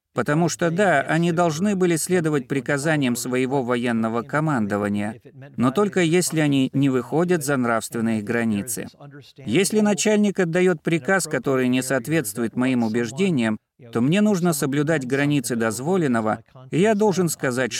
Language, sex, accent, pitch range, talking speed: Russian, male, native, 120-165 Hz, 130 wpm